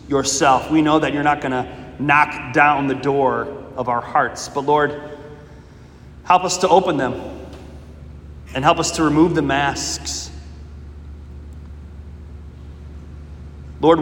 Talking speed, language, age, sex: 130 wpm, English, 30-49, male